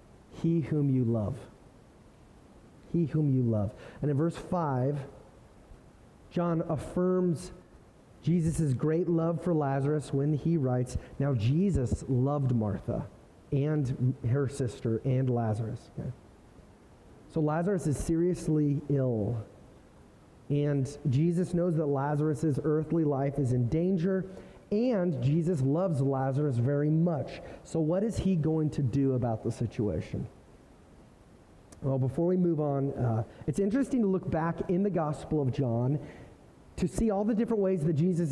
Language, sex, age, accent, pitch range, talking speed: English, male, 30-49, American, 135-175 Hz, 135 wpm